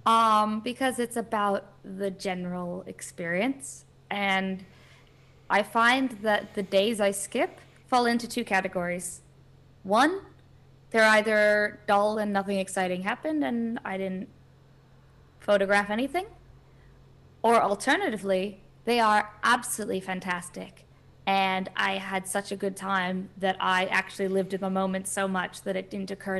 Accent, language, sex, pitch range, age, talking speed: American, English, female, 180-210 Hz, 20-39, 130 wpm